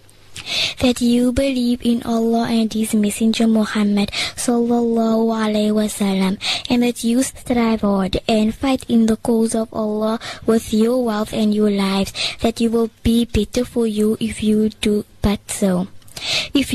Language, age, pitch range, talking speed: English, 10-29, 225-260 Hz, 155 wpm